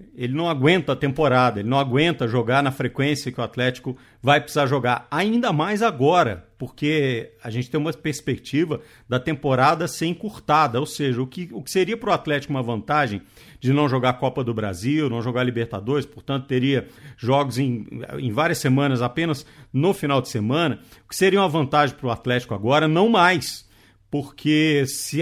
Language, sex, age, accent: Portuguese, male, 50-69, Brazilian